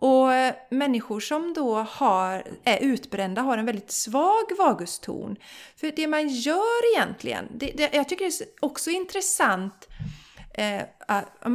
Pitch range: 205-280 Hz